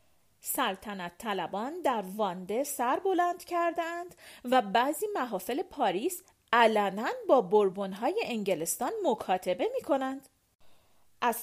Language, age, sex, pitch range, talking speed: Persian, 40-59, female, 205-290 Hz, 105 wpm